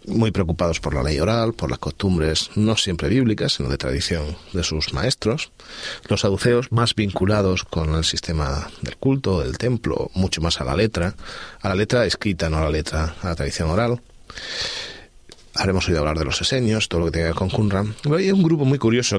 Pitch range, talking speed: 85-115 Hz, 205 wpm